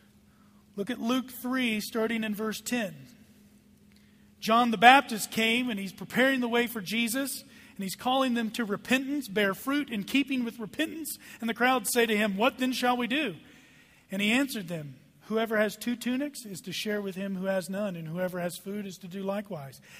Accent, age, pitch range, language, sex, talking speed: American, 40-59, 190-230 Hz, English, male, 200 wpm